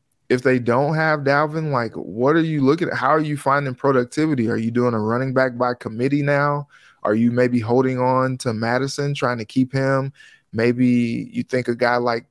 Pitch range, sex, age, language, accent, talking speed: 125-145 Hz, male, 20-39, English, American, 205 wpm